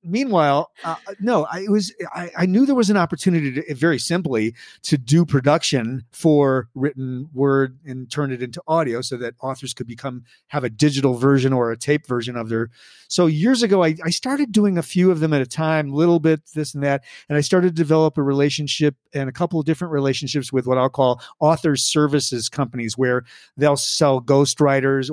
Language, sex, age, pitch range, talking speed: English, male, 40-59, 130-165 Hz, 205 wpm